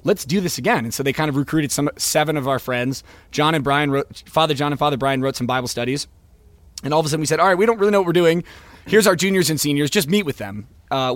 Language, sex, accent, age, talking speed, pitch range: English, male, American, 20-39, 290 wpm, 120-150 Hz